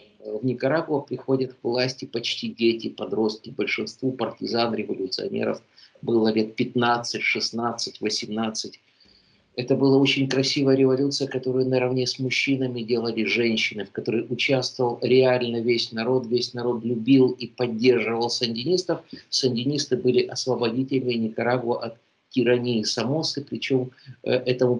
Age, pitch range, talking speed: 50-69, 115-130 Hz, 115 wpm